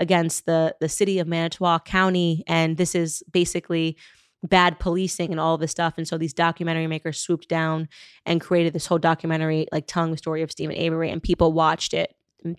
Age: 20-39